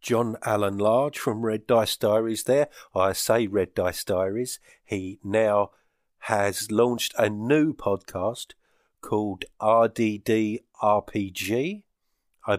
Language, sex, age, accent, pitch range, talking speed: English, male, 50-69, British, 100-120 Hz, 115 wpm